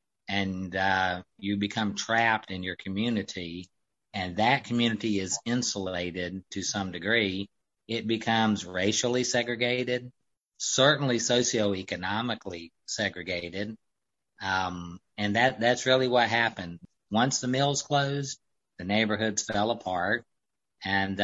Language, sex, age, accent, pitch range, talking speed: English, male, 50-69, American, 95-115 Hz, 110 wpm